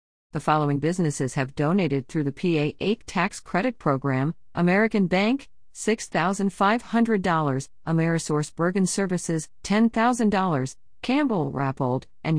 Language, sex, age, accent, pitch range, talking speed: English, female, 50-69, American, 145-200 Hz, 95 wpm